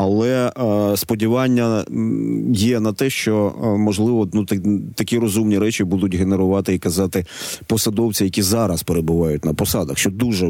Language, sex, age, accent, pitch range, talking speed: Ukrainian, male, 30-49, native, 100-125 Hz, 145 wpm